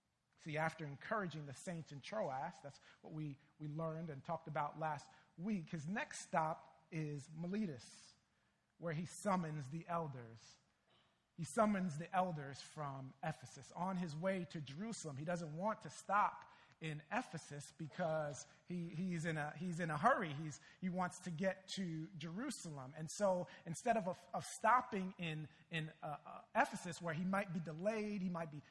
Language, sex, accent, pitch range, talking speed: English, male, American, 155-195 Hz, 170 wpm